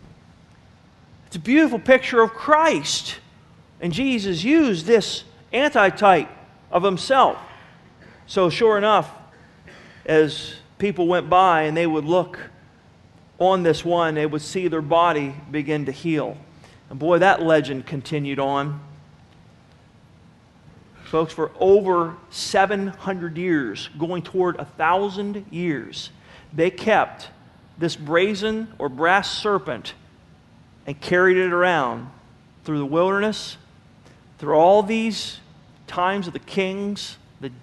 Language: English